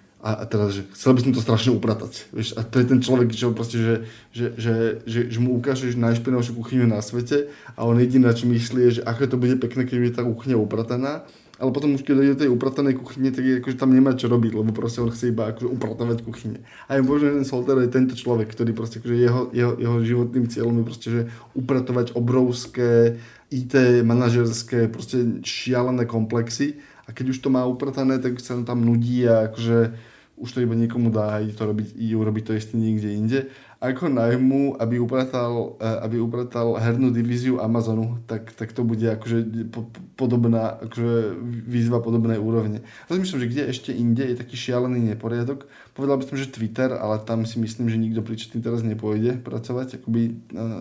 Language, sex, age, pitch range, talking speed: Slovak, male, 20-39, 115-125 Hz, 185 wpm